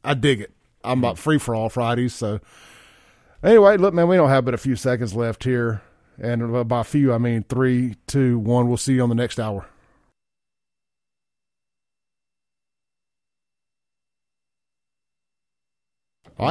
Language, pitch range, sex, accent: English, 105-140 Hz, male, American